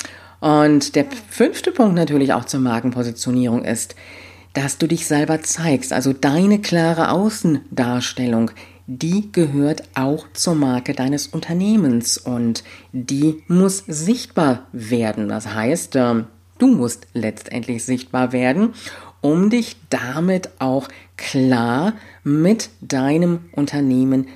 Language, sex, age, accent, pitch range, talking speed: German, female, 50-69, German, 115-165 Hz, 110 wpm